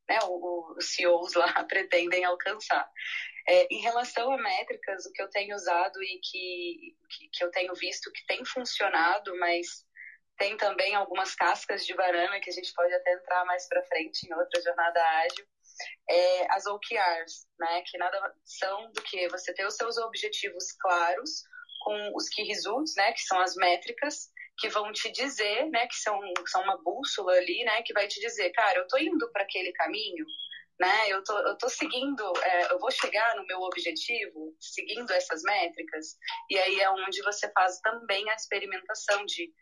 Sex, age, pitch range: female, 20-39, 180-235 Hz